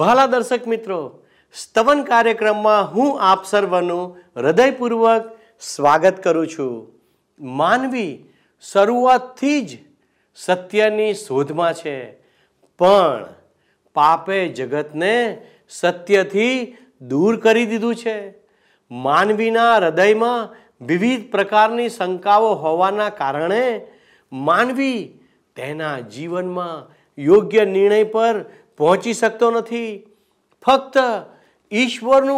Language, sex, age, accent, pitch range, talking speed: Gujarati, male, 50-69, native, 185-240 Hz, 80 wpm